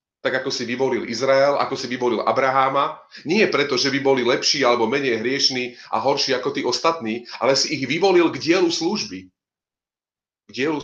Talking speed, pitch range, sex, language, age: 175 wpm, 120-160 Hz, male, Slovak, 40-59